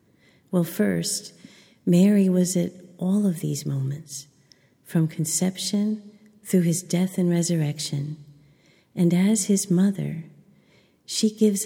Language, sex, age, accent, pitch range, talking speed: English, female, 50-69, American, 155-185 Hz, 115 wpm